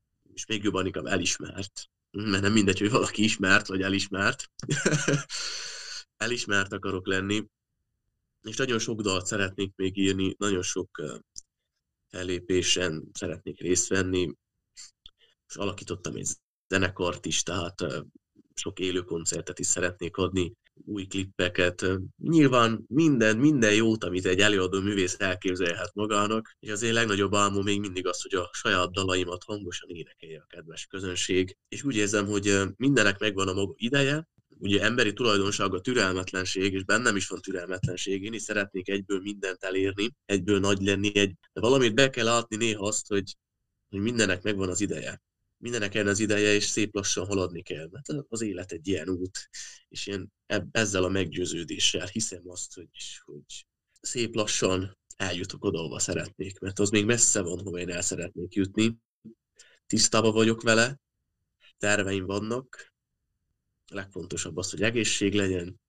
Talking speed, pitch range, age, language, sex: 145 wpm, 95-110 Hz, 20-39, Hungarian, male